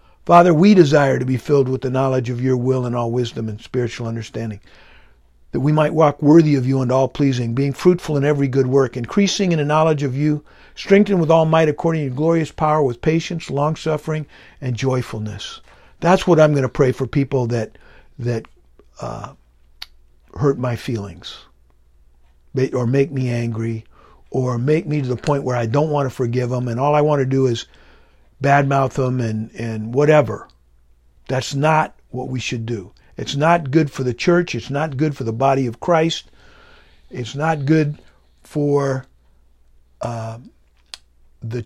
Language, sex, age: English, male, 50-69